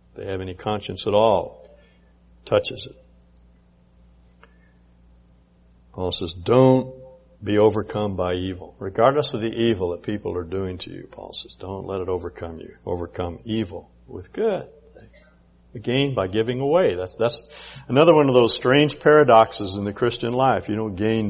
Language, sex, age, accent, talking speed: English, male, 60-79, American, 160 wpm